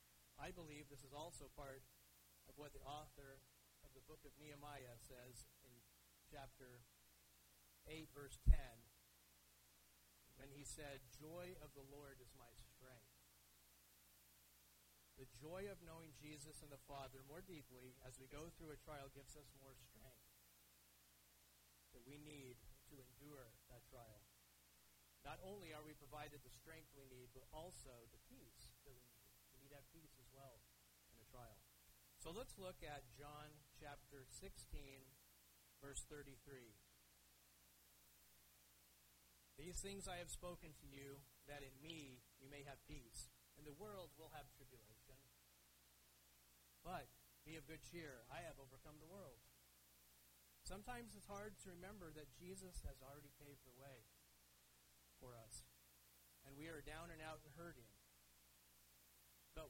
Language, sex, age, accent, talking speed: English, male, 50-69, American, 140 wpm